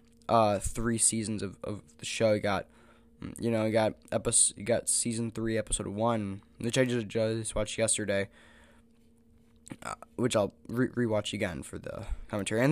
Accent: American